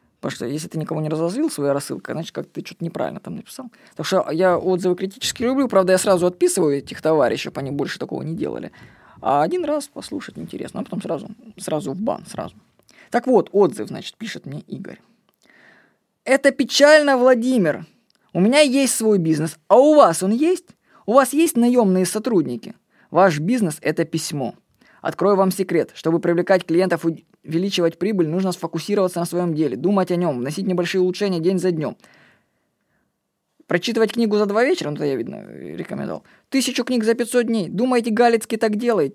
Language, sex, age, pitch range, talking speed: Russian, female, 20-39, 175-230 Hz, 175 wpm